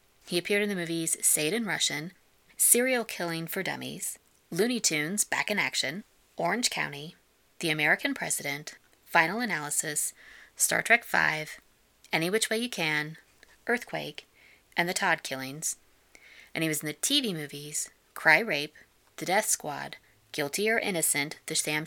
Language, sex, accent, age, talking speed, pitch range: English, female, American, 20-39, 150 wpm, 145-180 Hz